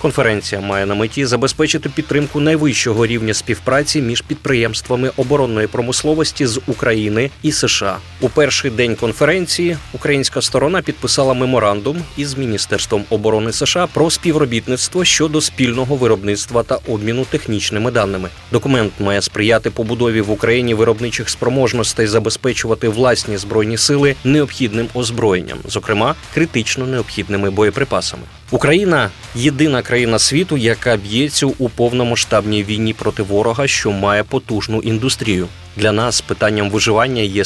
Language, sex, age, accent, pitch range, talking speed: Ukrainian, male, 20-39, native, 105-140 Hz, 125 wpm